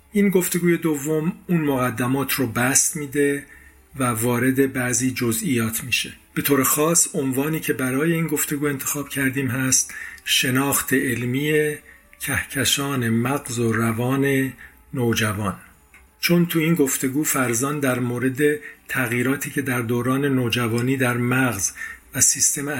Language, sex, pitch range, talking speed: Persian, male, 115-140 Hz, 125 wpm